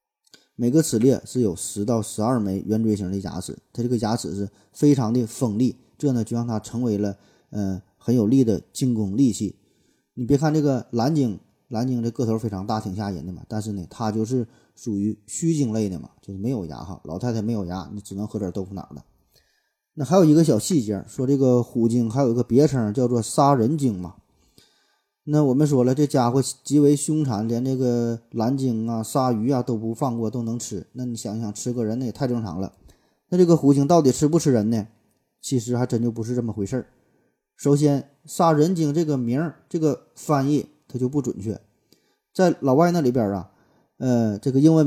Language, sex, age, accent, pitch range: Chinese, male, 20-39, native, 110-140 Hz